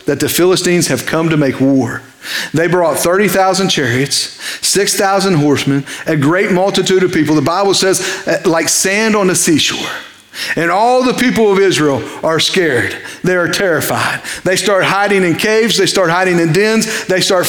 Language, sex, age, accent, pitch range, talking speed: English, male, 40-59, American, 140-190 Hz, 170 wpm